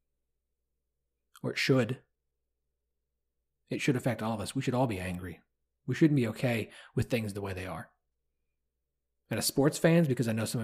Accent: American